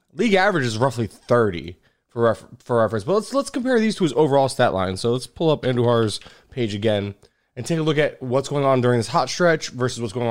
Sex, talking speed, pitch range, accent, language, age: male, 240 wpm, 120-155 Hz, American, English, 20-39